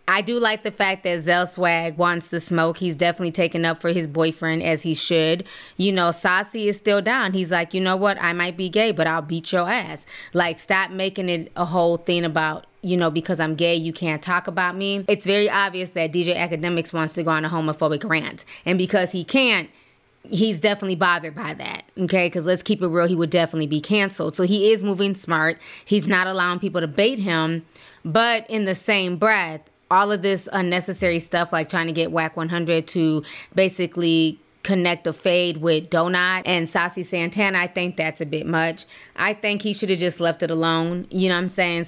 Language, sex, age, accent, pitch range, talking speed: English, female, 20-39, American, 165-195 Hz, 215 wpm